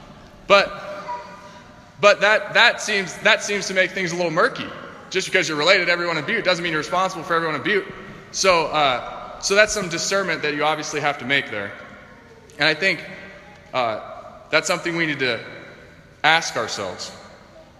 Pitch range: 145-195 Hz